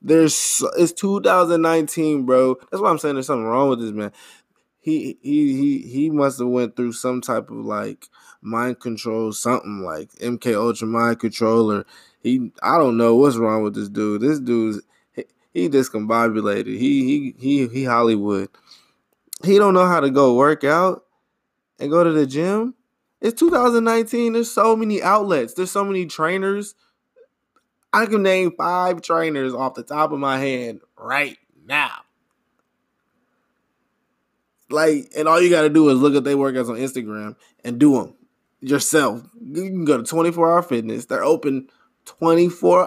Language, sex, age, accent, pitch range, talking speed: English, male, 20-39, American, 120-185 Hz, 160 wpm